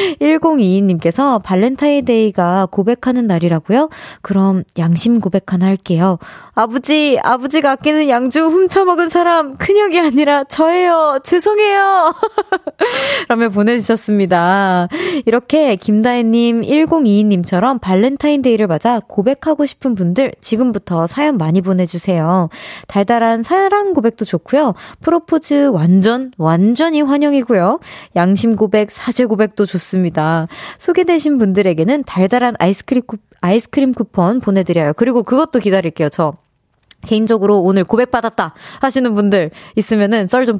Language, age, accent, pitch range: Korean, 20-39, native, 185-285 Hz